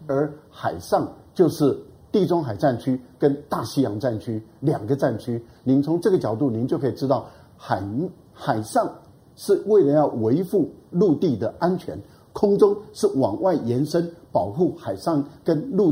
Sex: male